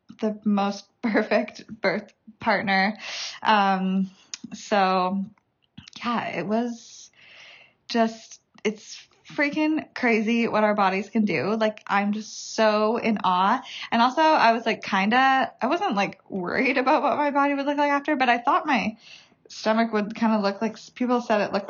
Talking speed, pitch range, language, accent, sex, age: 160 wpm, 200-240 Hz, English, American, female, 20-39